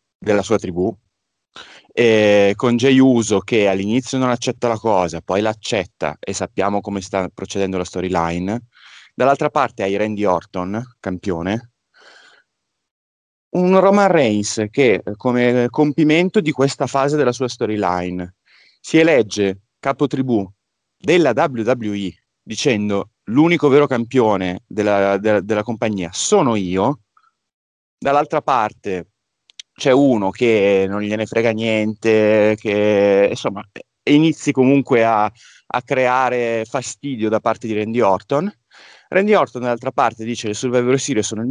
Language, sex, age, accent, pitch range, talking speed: Italian, male, 30-49, native, 105-140 Hz, 130 wpm